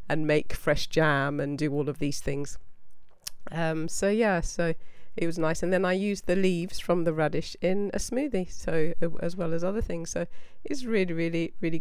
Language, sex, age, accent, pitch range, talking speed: English, female, 40-59, British, 145-175 Hz, 205 wpm